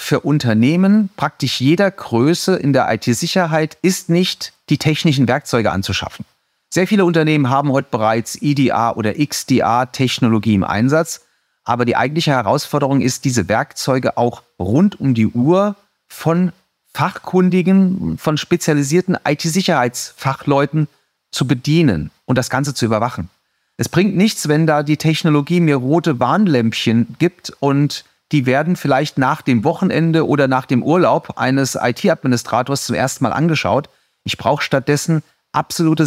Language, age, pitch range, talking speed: German, 30-49, 125-160 Hz, 135 wpm